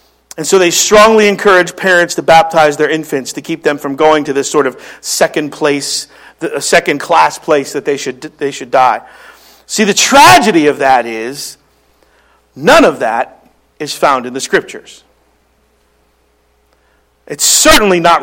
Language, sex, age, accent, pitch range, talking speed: English, male, 50-69, American, 150-210 Hz, 155 wpm